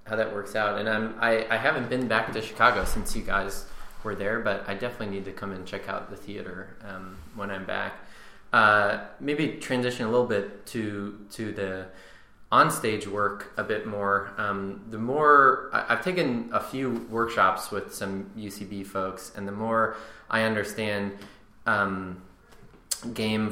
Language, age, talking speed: English, 20-39, 170 wpm